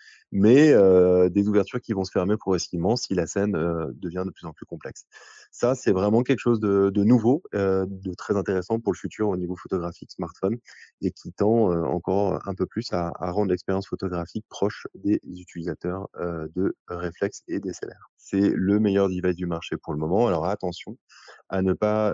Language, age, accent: French, 20-39, French